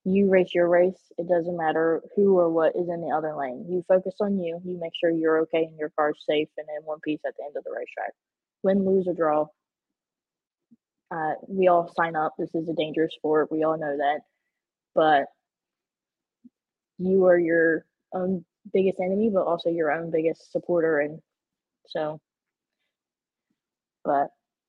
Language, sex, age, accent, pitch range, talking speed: English, female, 20-39, American, 160-190 Hz, 175 wpm